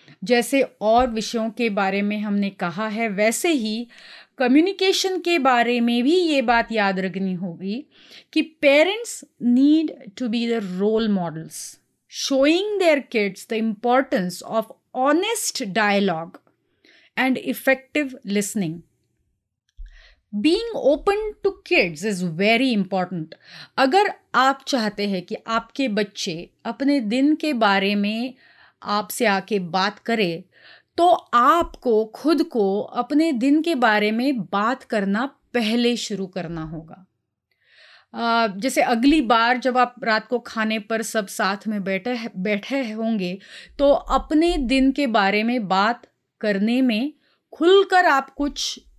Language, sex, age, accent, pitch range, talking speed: Hindi, female, 30-49, native, 205-275 Hz, 130 wpm